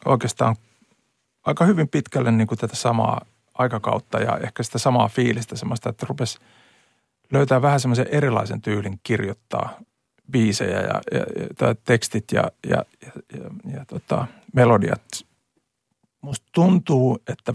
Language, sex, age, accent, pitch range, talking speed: Finnish, male, 50-69, native, 115-130 Hz, 120 wpm